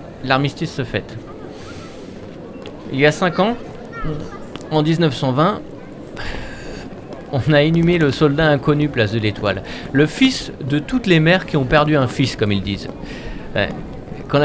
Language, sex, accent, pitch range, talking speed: French, male, French, 110-150 Hz, 140 wpm